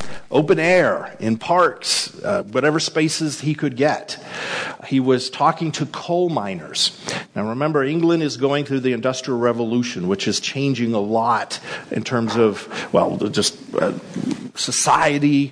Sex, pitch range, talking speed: male, 120-155 Hz, 145 wpm